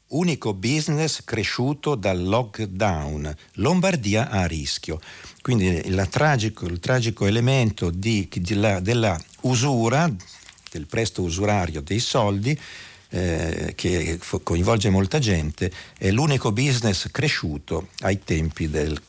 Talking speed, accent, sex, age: 115 wpm, native, male, 50-69